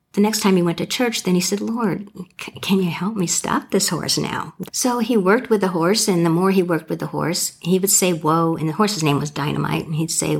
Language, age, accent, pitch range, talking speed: English, 50-69, American, 155-190 Hz, 265 wpm